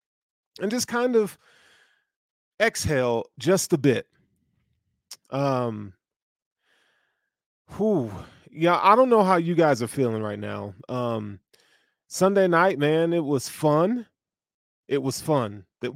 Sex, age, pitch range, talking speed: male, 20-39, 125-175 Hz, 115 wpm